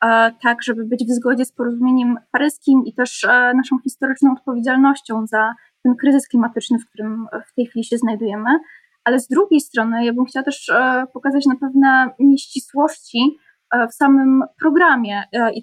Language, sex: Polish, female